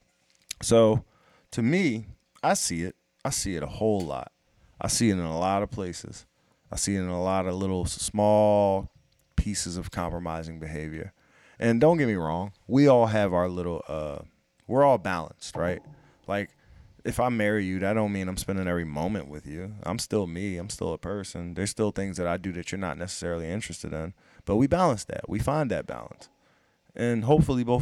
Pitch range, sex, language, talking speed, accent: 85-115 Hz, male, English, 200 wpm, American